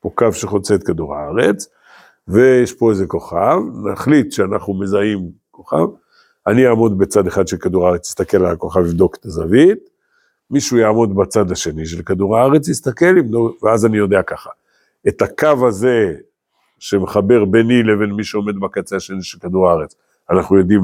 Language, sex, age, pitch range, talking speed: Hebrew, male, 50-69, 95-125 Hz, 155 wpm